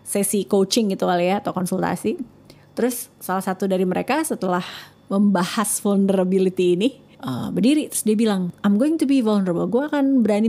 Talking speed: 165 wpm